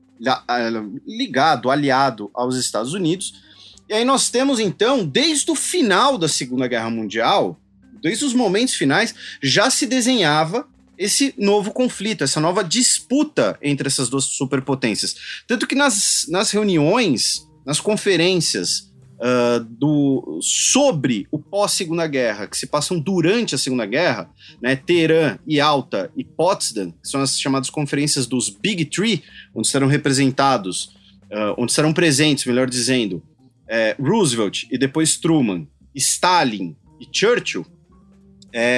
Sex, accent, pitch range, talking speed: male, Brazilian, 130-200 Hz, 135 wpm